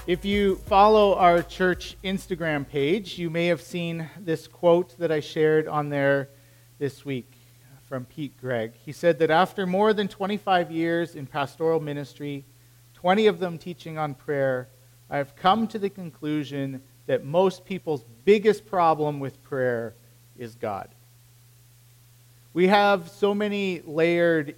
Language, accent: English, American